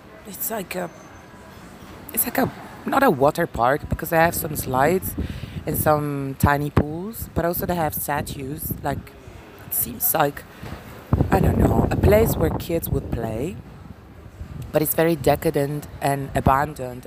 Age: 20-39